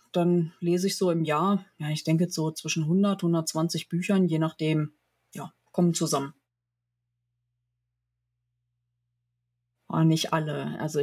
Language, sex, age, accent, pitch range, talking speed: German, female, 30-49, German, 155-195 Hz, 120 wpm